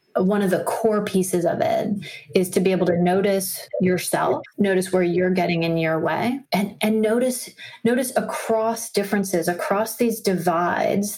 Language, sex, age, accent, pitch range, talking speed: English, female, 30-49, American, 185-220 Hz, 160 wpm